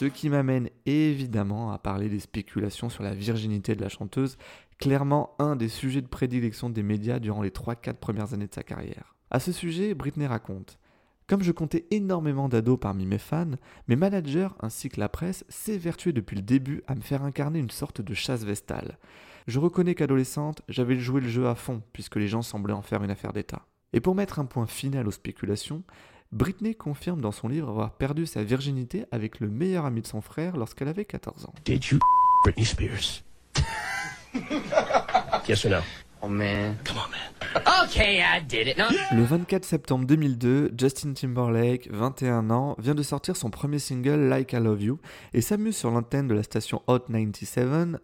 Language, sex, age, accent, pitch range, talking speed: French, male, 30-49, French, 110-150 Hz, 175 wpm